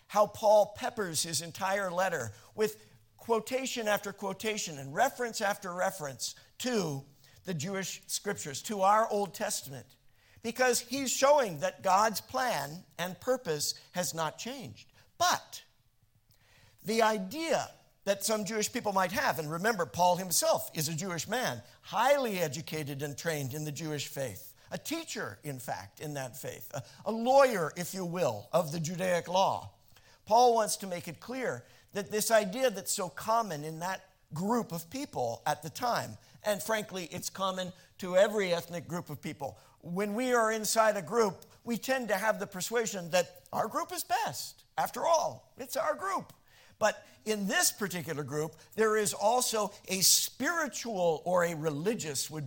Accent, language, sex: American, English, male